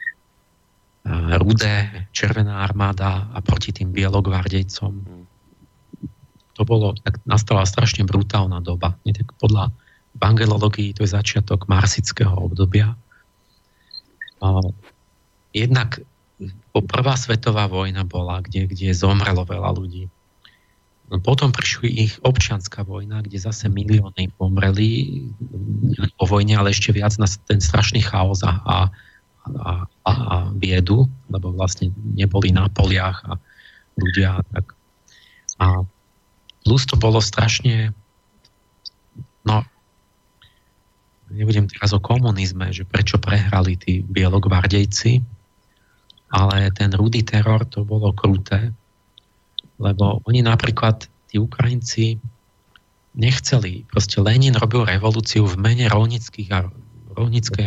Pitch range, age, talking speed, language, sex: 95-110 Hz, 40-59, 105 wpm, Slovak, male